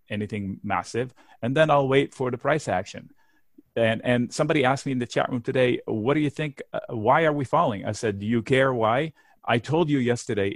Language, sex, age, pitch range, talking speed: English, male, 30-49, 105-145 Hz, 220 wpm